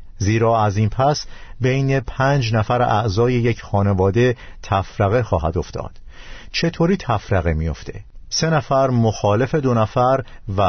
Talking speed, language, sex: 125 wpm, Persian, male